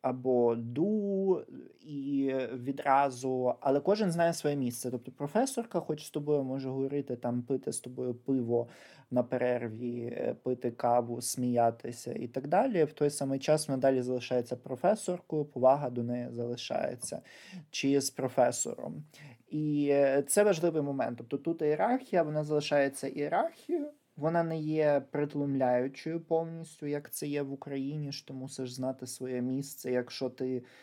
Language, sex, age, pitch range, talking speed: Ukrainian, male, 20-39, 125-150 Hz, 140 wpm